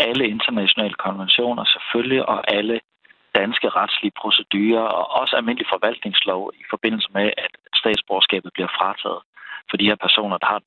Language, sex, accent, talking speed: Danish, male, native, 150 wpm